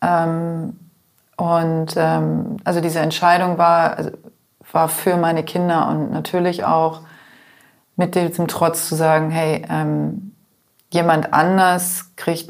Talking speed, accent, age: 115 wpm, German, 30-49